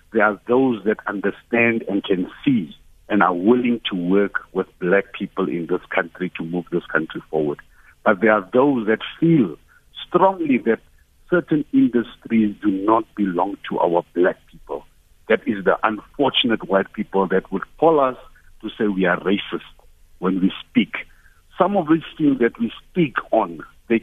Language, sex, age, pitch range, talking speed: English, male, 60-79, 100-125 Hz, 170 wpm